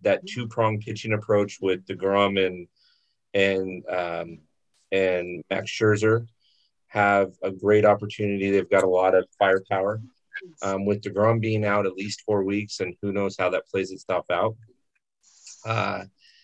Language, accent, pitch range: English, American, 100-120 Hz